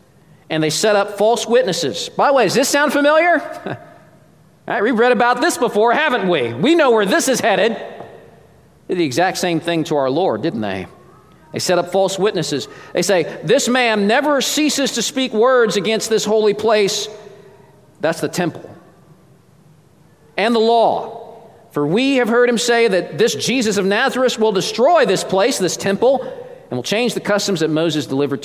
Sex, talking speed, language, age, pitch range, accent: male, 180 wpm, English, 40-59, 165-240 Hz, American